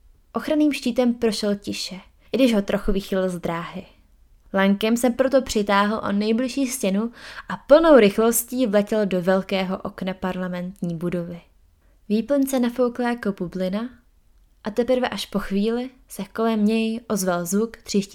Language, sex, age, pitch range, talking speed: Czech, female, 20-39, 190-230 Hz, 135 wpm